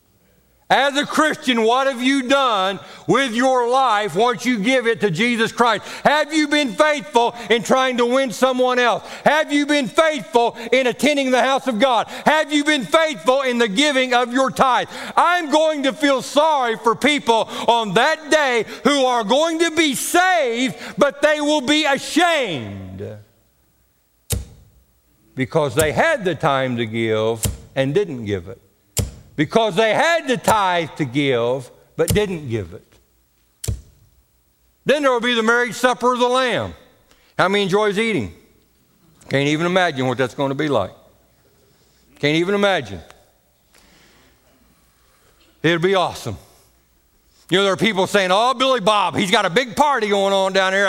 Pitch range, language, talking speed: 155-260 Hz, English, 160 wpm